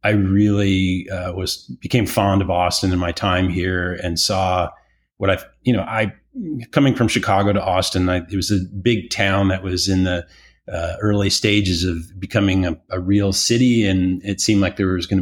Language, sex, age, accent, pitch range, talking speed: English, male, 30-49, American, 90-105 Hz, 195 wpm